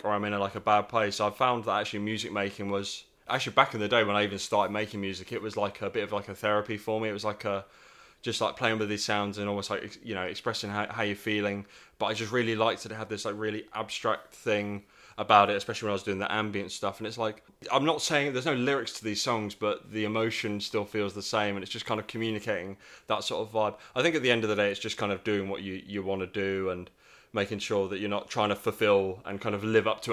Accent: British